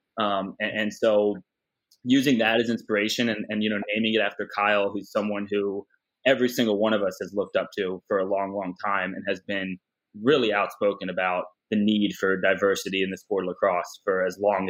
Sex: male